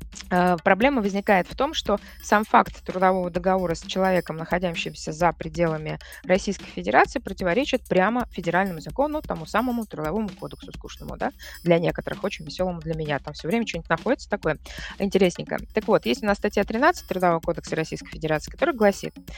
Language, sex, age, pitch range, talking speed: Russian, female, 20-39, 165-215 Hz, 160 wpm